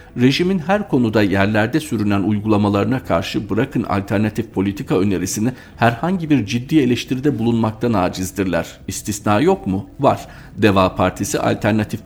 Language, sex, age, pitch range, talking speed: Turkish, male, 50-69, 95-115 Hz, 120 wpm